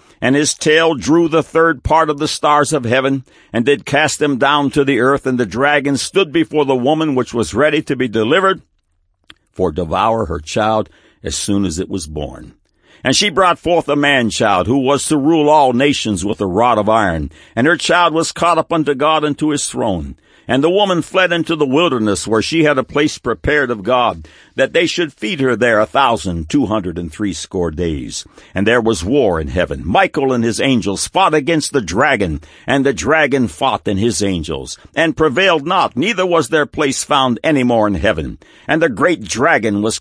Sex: male